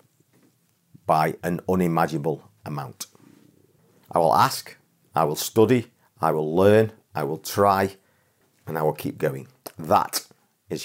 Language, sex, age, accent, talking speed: English, male, 40-59, British, 125 wpm